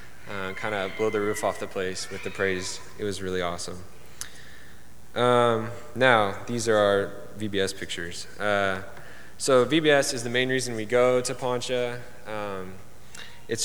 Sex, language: male, English